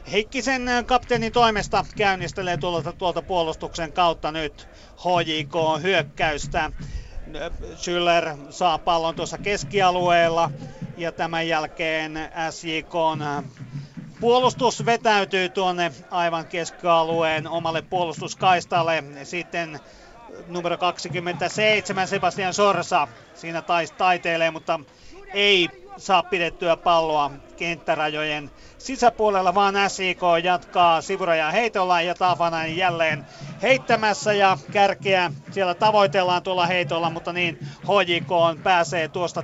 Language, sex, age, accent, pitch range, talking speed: Finnish, male, 40-59, native, 165-195 Hz, 90 wpm